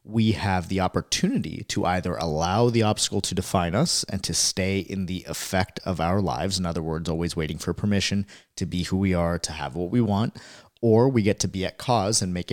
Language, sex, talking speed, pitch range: English, male, 225 wpm, 90-110 Hz